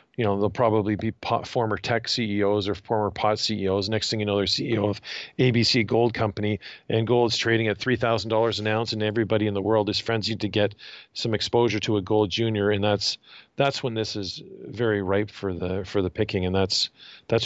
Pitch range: 105-120 Hz